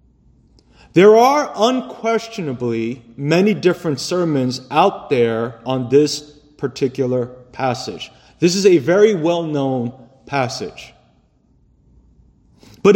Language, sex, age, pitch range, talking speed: English, male, 30-49, 135-205 Hz, 95 wpm